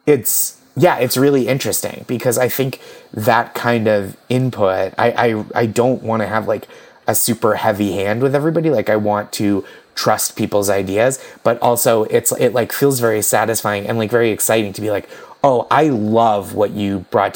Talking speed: 185 wpm